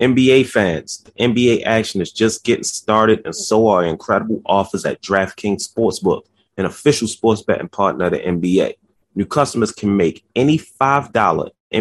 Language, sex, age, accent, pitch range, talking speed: English, male, 30-49, American, 95-125 Hz, 160 wpm